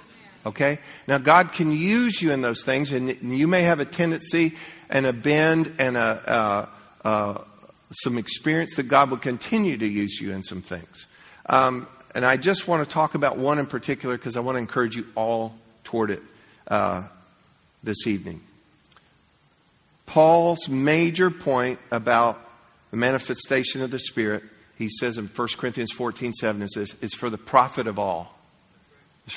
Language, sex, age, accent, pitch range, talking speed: English, male, 50-69, American, 110-135 Hz, 170 wpm